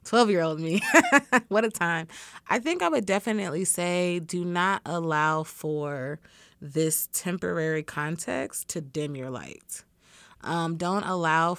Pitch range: 150-195 Hz